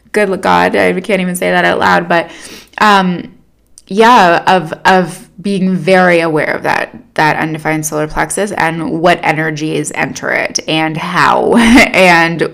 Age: 20-39